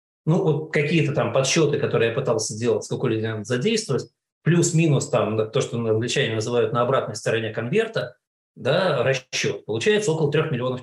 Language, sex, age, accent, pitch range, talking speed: Russian, male, 20-39, native, 115-155 Hz, 165 wpm